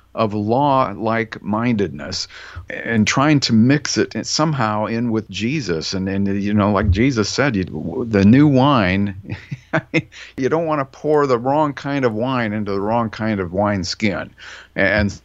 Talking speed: 160 wpm